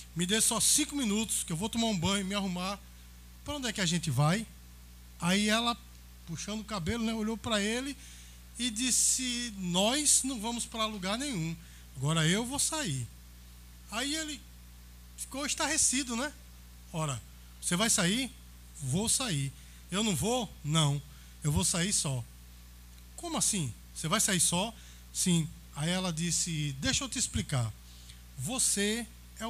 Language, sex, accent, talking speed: Portuguese, male, Brazilian, 155 wpm